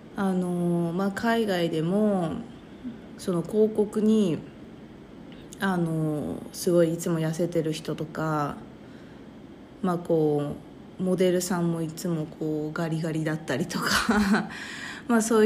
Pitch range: 160-215 Hz